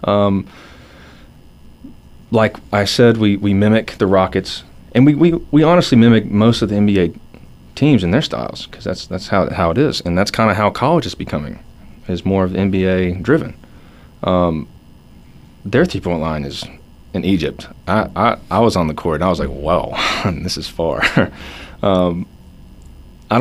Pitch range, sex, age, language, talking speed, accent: 75-100 Hz, male, 30-49, English, 175 wpm, American